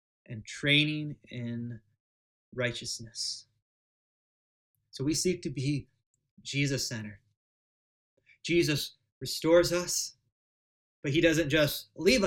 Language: English